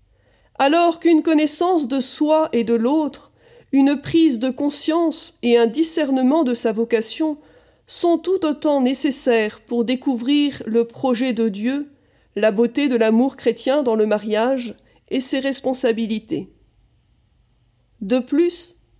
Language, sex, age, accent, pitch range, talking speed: French, female, 40-59, French, 225-300 Hz, 130 wpm